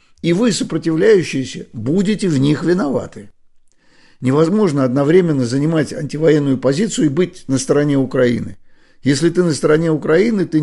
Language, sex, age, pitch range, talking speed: Russian, male, 50-69, 135-170 Hz, 130 wpm